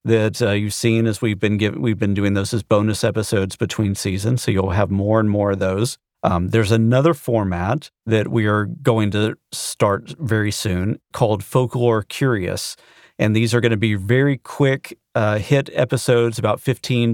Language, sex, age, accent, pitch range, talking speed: English, male, 40-59, American, 100-120 Hz, 185 wpm